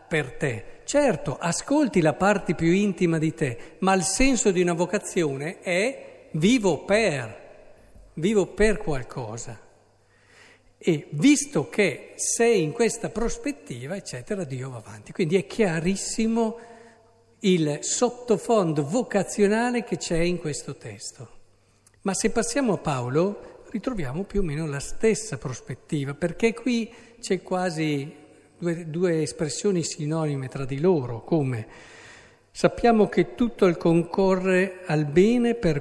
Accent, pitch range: native, 150-205 Hz